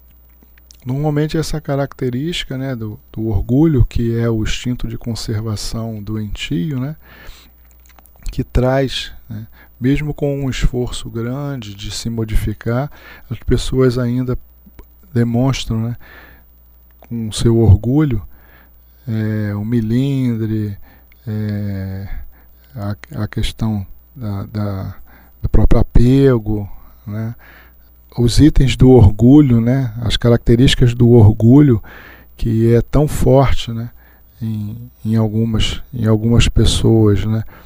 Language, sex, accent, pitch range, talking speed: Portuguese, male, Brazilian, 100-125 Hz, 100 wpm